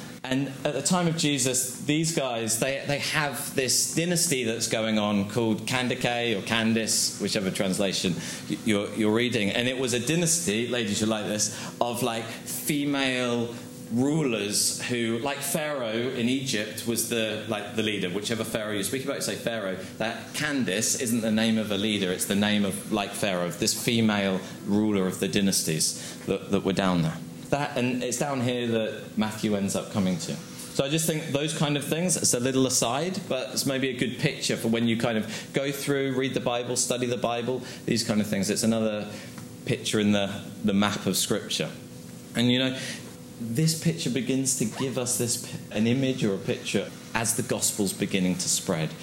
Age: 20-39